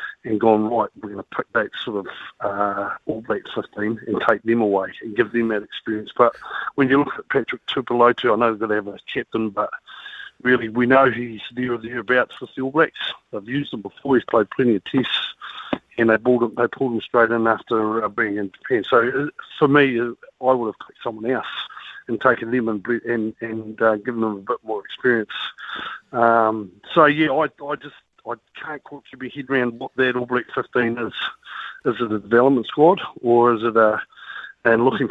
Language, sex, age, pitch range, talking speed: English, male, 50-69, 110-125 Hz, 215 wpm